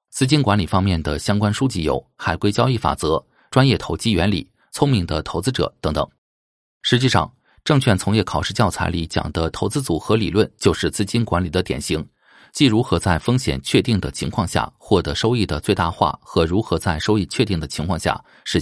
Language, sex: Chinese, male